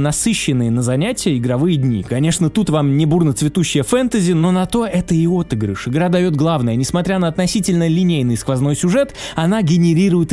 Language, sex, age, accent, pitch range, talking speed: Russian, male, 20-39, native, 145-200 Hz, 175 wpm